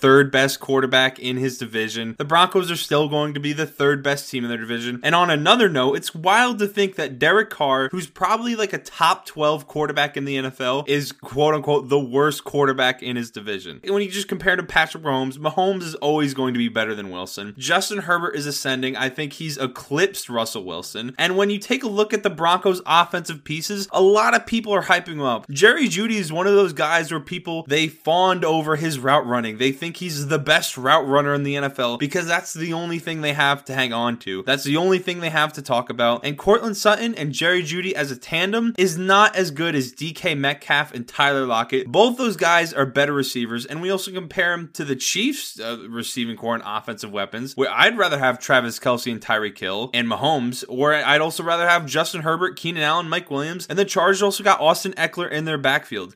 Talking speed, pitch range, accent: 225 wpm, 135-180 Hz, American